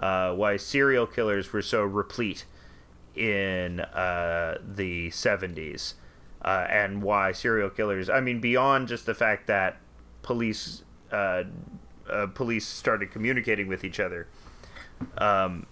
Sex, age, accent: male, 30-49, American